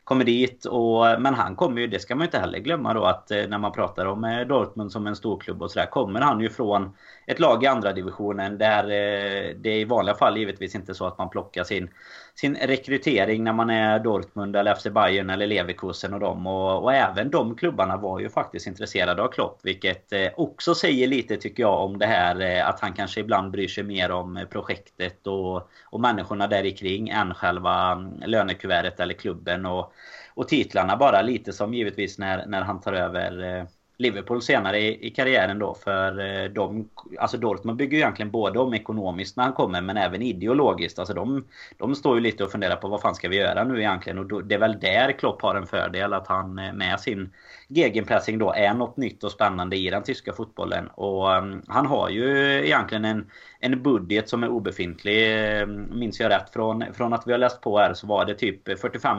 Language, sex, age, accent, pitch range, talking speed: Swedish, male, 30-49, native, 95-115 Hz, 205 wpm